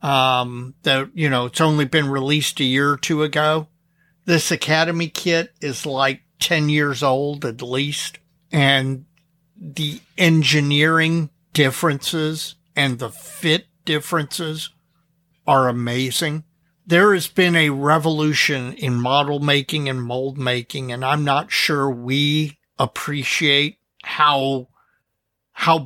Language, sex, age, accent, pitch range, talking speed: English, male, 50-69, American, 145-170 Hz, 120 wpm